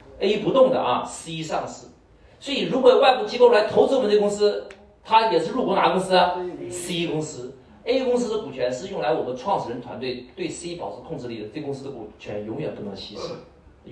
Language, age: Chinese, 50-69